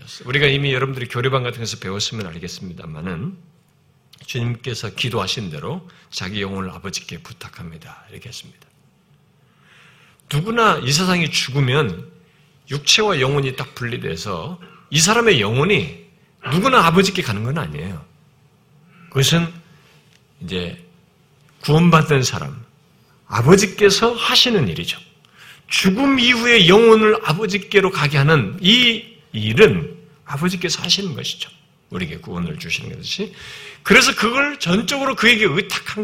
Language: Korean